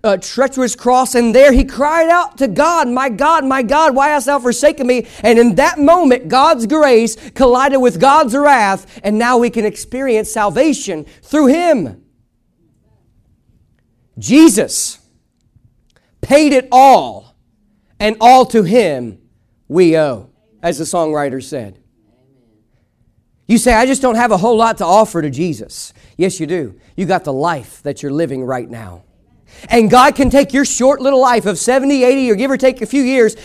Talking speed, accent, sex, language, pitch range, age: 165 wpm, American, male, English, 165-265 Hz, 40-59